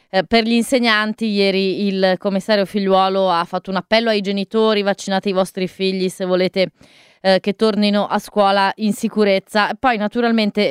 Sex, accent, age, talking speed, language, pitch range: female, native, 20-39, 155 wpm, Italian, 190-210 Hz